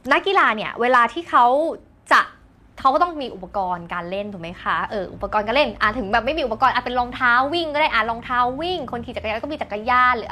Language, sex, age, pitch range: Thai, female, 20-39, 220-320 Hz